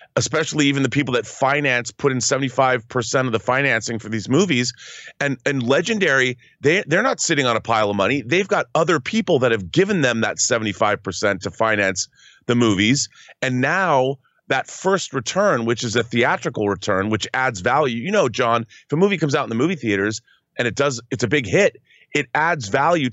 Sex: male